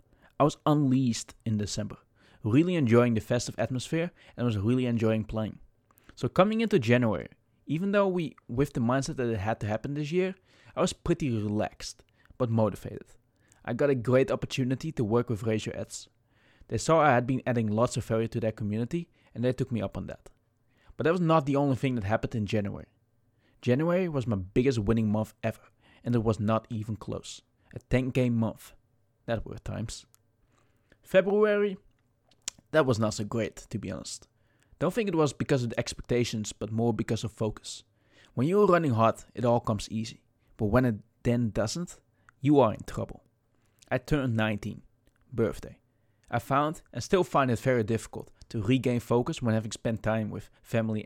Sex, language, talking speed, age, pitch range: male, English, 185 wpm, 20-39, 110-130 Hz